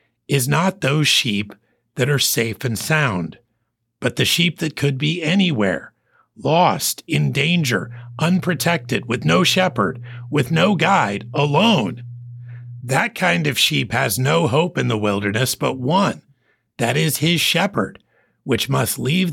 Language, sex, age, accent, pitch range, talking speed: English, male, 50-69, American, 120-185 Hz, 145 wpm